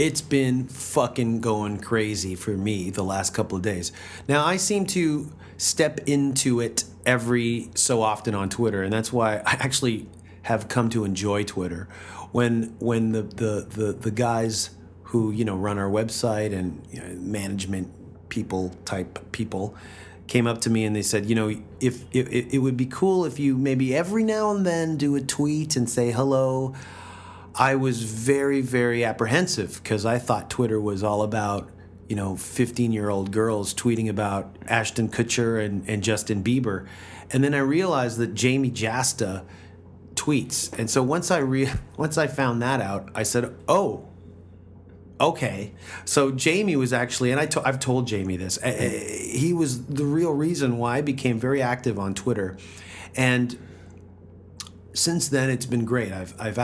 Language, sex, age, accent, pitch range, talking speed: English, male, 40-59, American, 100-130 Hz, 170 wpm